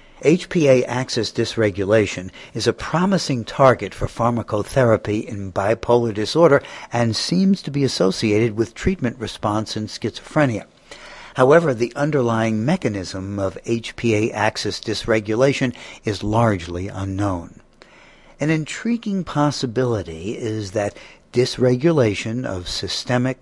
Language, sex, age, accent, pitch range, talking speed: English, male, 60-79, American, 105-130 Hz, 105 wpm